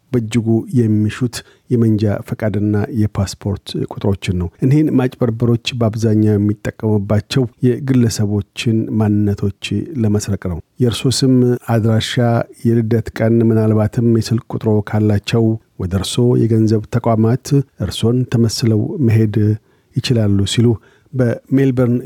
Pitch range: 110-125 Hz